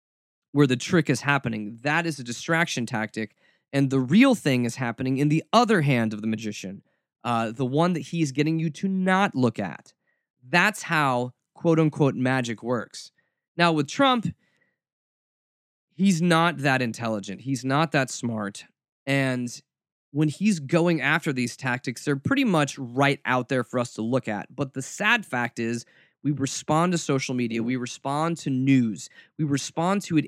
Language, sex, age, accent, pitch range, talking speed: English, male, 20-39, American, 125-170 Hz, 170 wpm